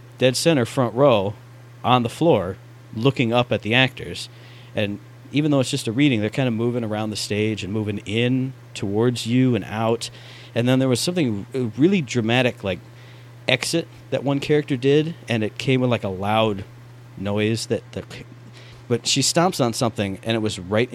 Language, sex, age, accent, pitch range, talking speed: English, male, 40-59, American, 110-125 Hz, 185 wpm